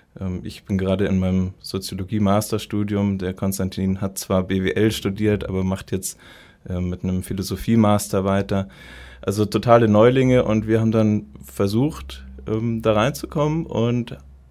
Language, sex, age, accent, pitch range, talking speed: German, male, 20-39, German, 95-110 Hz, 125 wpm